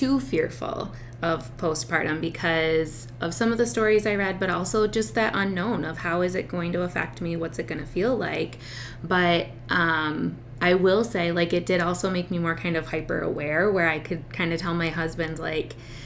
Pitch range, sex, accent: 160-185 Hz, female, American